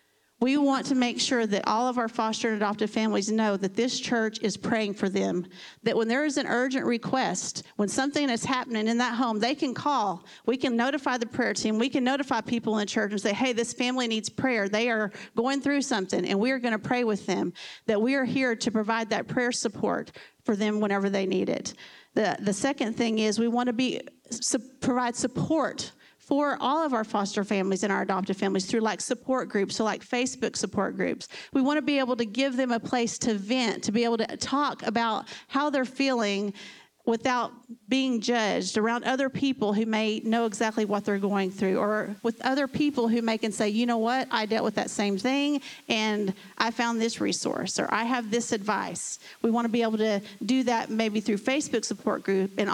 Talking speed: 220 wpm